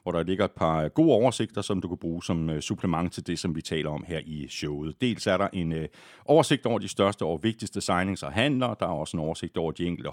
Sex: male